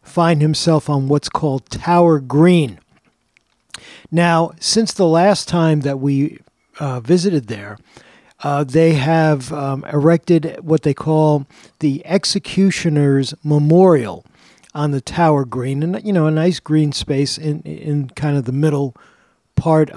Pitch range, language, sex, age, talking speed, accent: 145-175 Hz, English, male, 50-69, 140 wpm, American